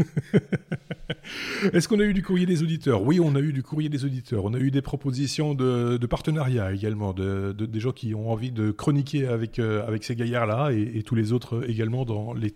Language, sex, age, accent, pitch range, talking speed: French, male, 30-49, French, 105-135 Hz, 215 wpm